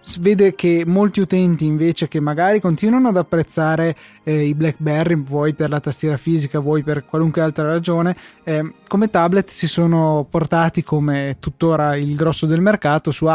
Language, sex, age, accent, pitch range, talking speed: Italian, male, 20-39, native, 150-170 Hz, 160 wpm